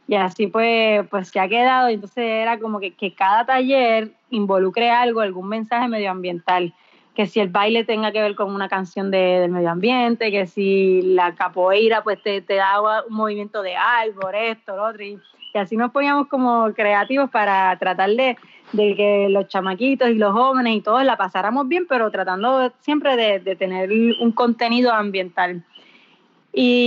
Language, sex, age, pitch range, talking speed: Spanish, female, 20-39, 195-245 Hz, 180 wpm